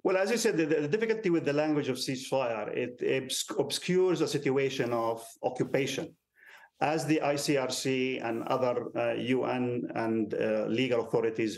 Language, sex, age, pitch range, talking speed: English, male, 50-69, 125-155 Hz, 155 wpm